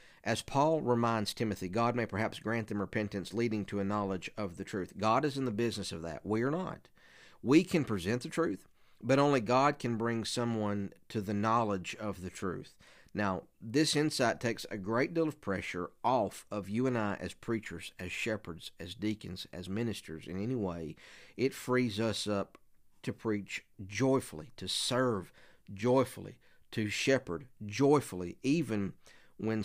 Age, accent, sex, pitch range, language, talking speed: 50-69, American, male, 95-125 Hz, English, 170 wpm